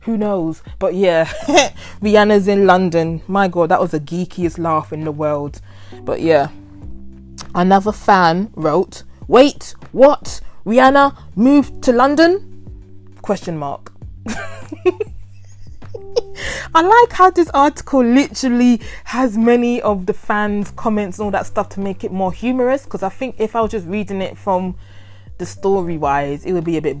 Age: 20-39